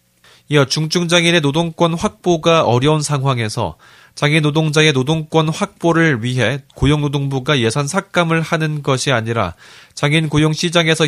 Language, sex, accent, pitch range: Korean, male, native, 125-160 Hz